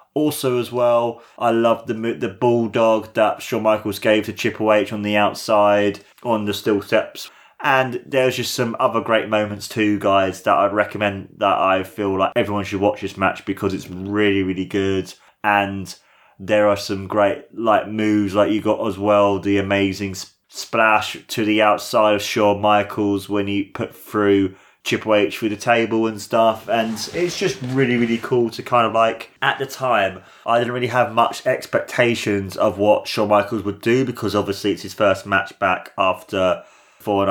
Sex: male